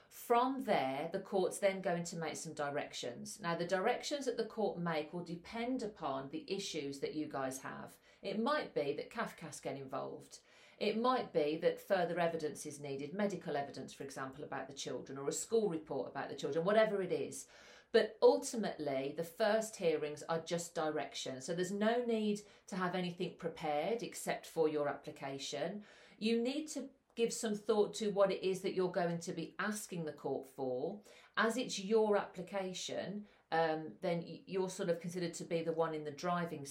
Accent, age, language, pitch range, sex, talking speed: British, 40-59, English, 155-210 Hz, female, 185 wpm